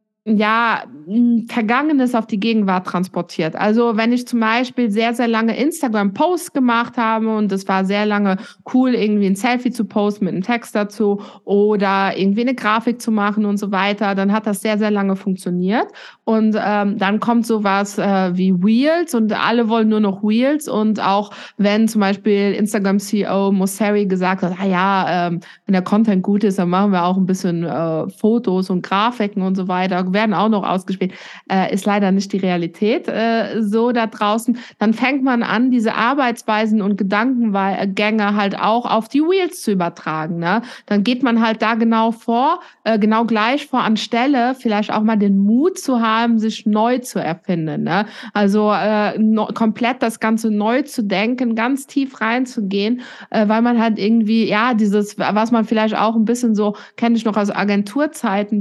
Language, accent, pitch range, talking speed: German, German, 200-230 Hz, 175 wpm